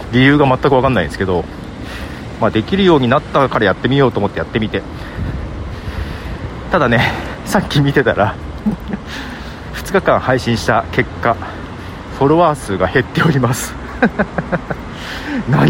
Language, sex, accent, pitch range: Japanese, male, native, 95-150 Hz